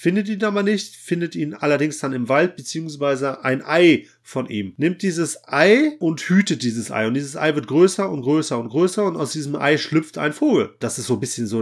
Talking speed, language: 225 wpm, German